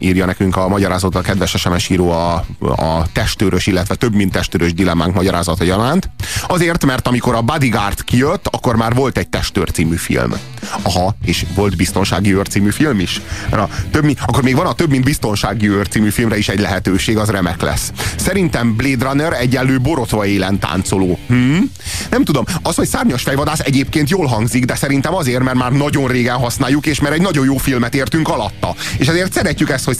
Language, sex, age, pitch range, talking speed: Hungarian, male, 30-49, 95-135 Hz, 185 wpm